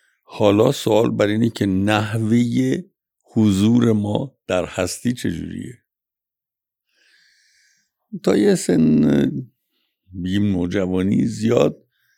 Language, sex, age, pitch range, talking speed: Persian, male, 60-79, 90-130 Hz, 80 wpm